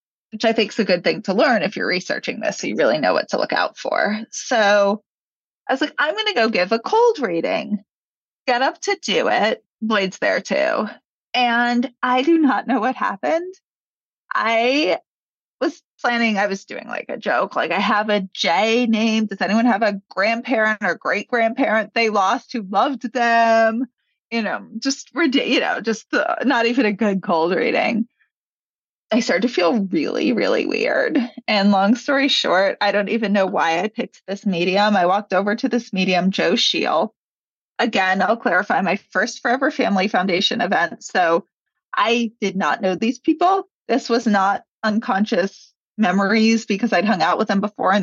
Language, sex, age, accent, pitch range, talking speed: English, female, 30-49, American, 200-250 Hz, 185 wpm